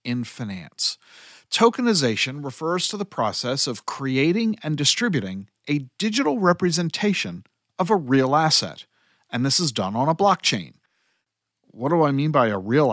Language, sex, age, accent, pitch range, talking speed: English, male, 50-69, American, 125-185 Hz, 150 wpm